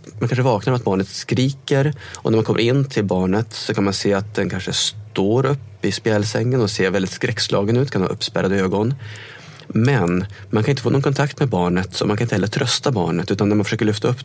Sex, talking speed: male, 230 wpm